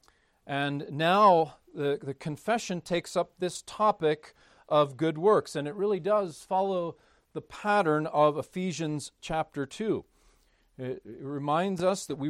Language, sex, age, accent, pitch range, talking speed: English, male, 40-59, American, 145-190 Hz, 135 wpm